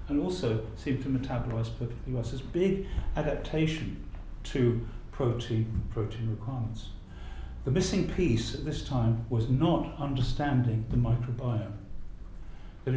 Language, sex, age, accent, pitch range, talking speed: English, male, 50-69, British, 110-130 Hz, 130 wpm